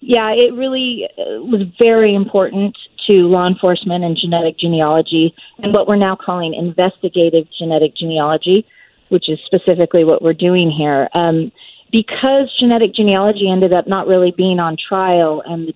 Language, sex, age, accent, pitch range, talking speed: English, female, 40-59, American, 175-210 Hz, 150 wpm